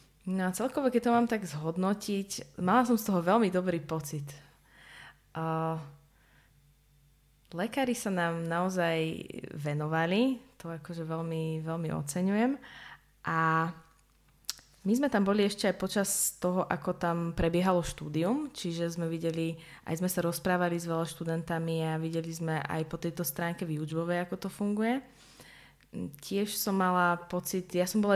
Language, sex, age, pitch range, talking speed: Slovak, female, 20-39, 160-185 Hz, 145 wpm